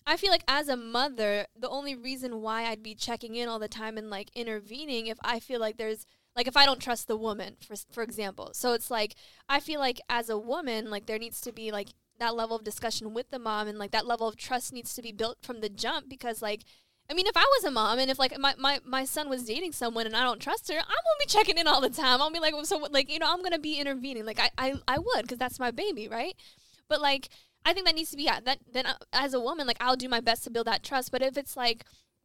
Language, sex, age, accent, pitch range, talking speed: English, female, 10-29, American, 225-260 Hz, 285 wpm